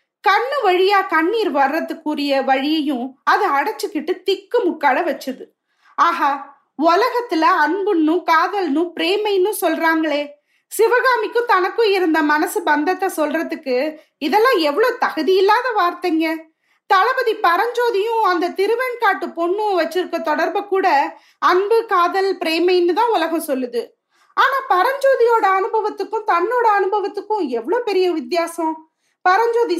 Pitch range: 300-405 Hz